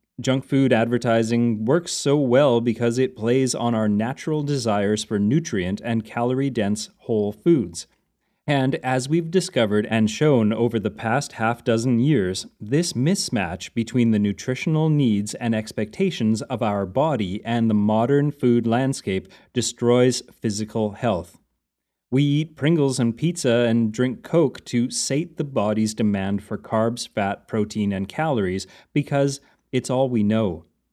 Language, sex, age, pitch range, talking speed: English, male, 30-49, 110-135 Hz, 140 wpm